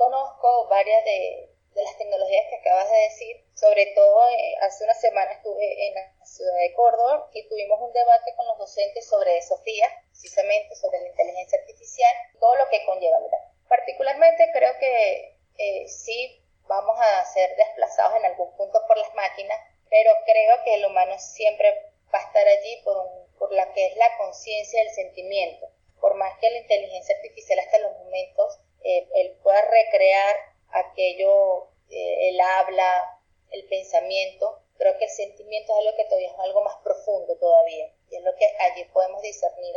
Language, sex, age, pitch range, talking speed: Spanish, female, 20-39, 205-320 Hz, 175 wpm